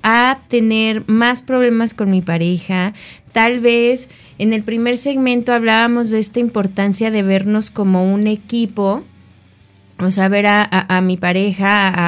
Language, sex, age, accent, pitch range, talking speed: Spanish, female, 20-39, Mexican, 185-225 Hz, 150 wpm